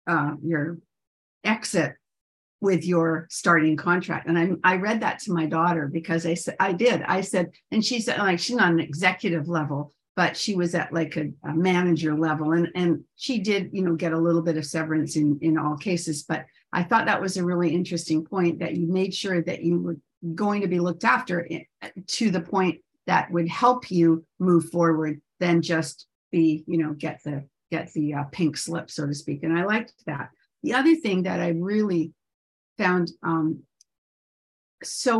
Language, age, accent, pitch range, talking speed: English, 60-79, American, 160-185 Hz, 195 wpm